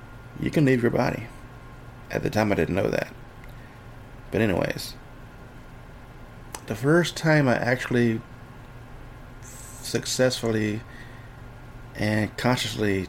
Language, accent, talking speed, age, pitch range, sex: English, American, 100 wpm, 30-49, 115-125 Hz, male